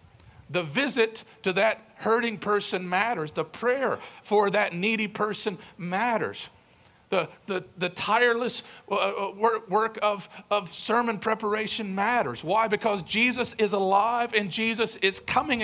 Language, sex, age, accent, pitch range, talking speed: English, male, 50-69, American, 180-230 Hz, 125 wpm